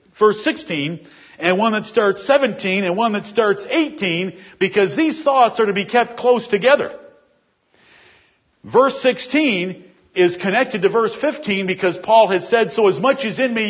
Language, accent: English, American